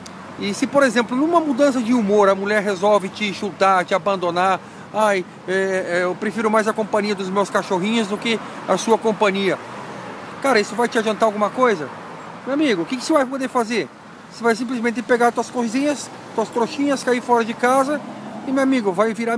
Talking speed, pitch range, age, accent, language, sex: 190 wpm, 195-255 Hz, 40-59, Brazilian, Portuguese, male